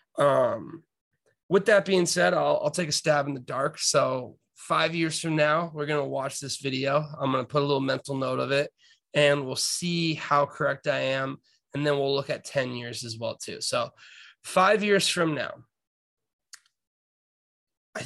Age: 20-39